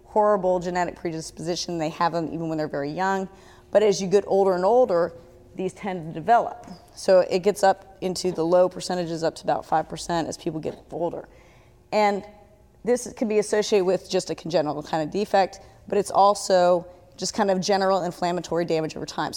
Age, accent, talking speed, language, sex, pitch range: 30-49, American, 190 wpm, English, female, 170-205 Hz